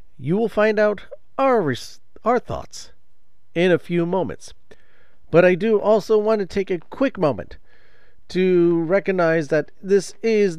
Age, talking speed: 40-59, 145 wpm